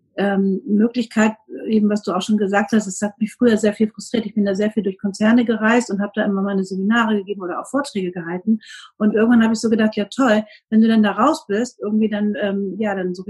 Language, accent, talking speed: German, German, 245 wpm